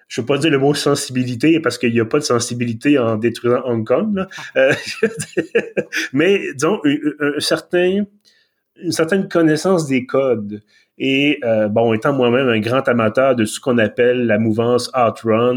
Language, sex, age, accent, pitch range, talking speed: French, male, 30-49, Canadian, 115-140 Hz, 170 wpm